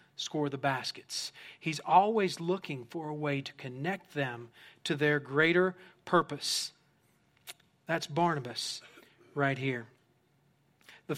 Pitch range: 150-200 Hz